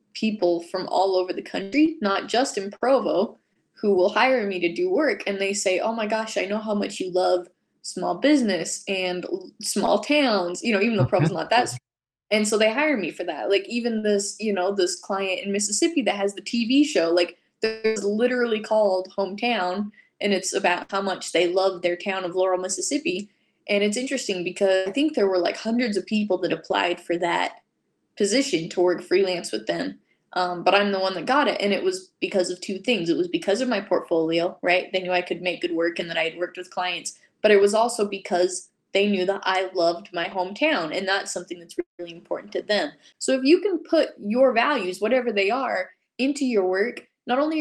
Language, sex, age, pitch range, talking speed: English, female, 10-29, 185-240 Hz, 220 wpm